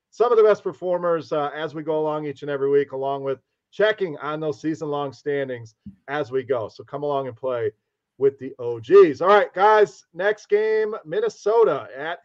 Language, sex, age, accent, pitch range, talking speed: English, male, 40-59, American, 140-205 Hz, 190 wpm